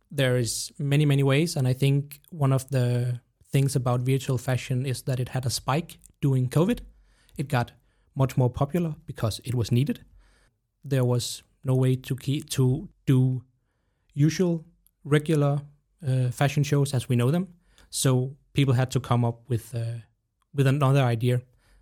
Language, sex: English, male